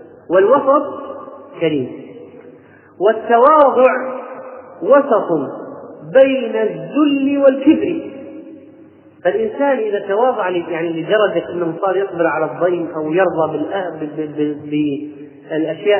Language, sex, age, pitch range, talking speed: Arabic, male, 30-49, 175-255 Hz, 75 wpm